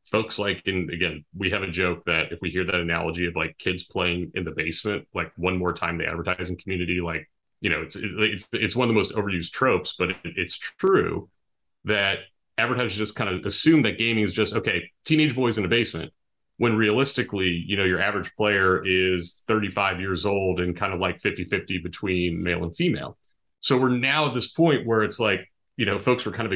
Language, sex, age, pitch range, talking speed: English, male, 30-49, 90-115 Hz, 210 wpm